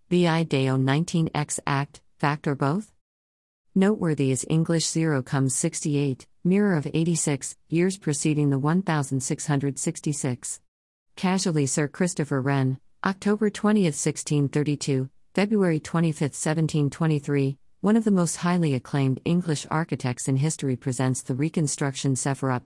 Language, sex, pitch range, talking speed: English, female, 130-160 Hz, 115 wpm